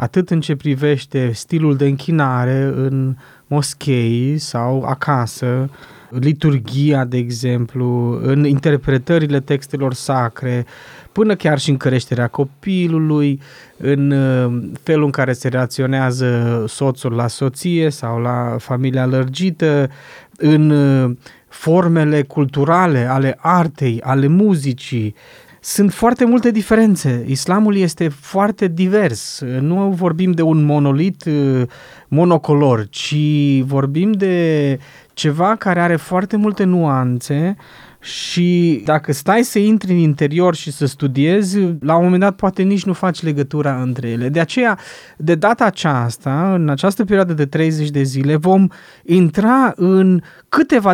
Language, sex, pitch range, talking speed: Romanian, male, 135-180 Hz, 120 wpm